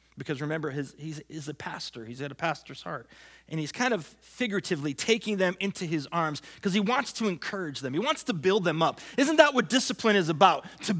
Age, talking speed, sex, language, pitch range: 30-49, 225 wpm, male, English, 135-195 Hz